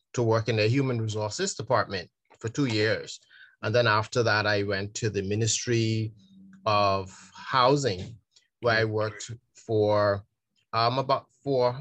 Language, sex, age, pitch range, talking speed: English, male, 30-49, 105-120 Hz, 140 wpm